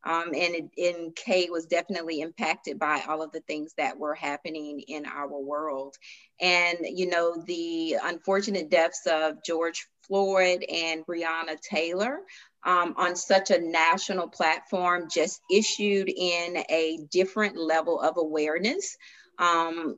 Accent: American